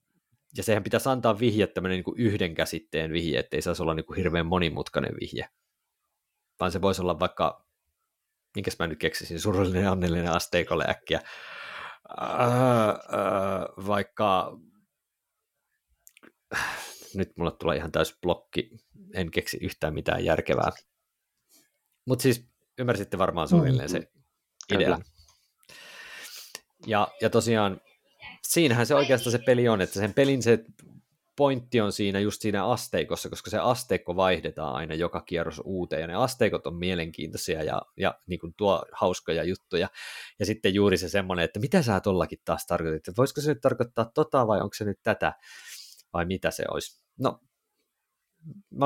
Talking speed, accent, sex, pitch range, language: 140 wpm, native, male, 90-125 Hz, Finnish